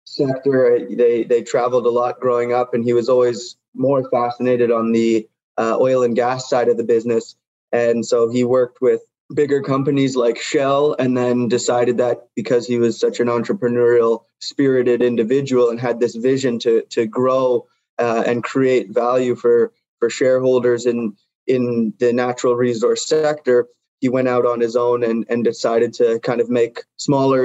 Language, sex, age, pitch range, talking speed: English, male, 20-39, 120-130 Hz, 175 wpm